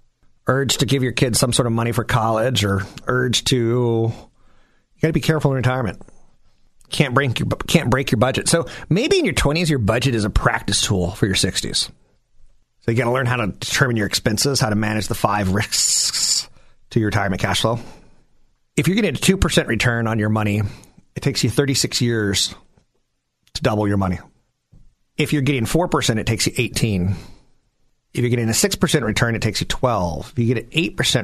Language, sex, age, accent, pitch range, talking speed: English, male, 40-59, American, 105-130 Hz, 205 wpm